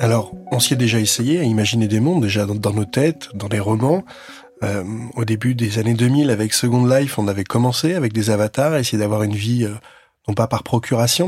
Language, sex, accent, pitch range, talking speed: French, male, French, 110-130 Hz, 225 wpm